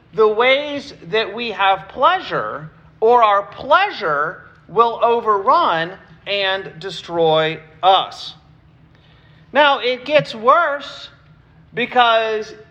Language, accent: English, American